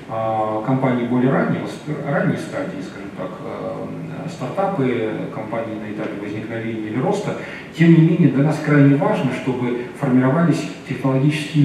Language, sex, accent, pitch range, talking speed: Russian, male, native, 115-145 Hz, 125 wpm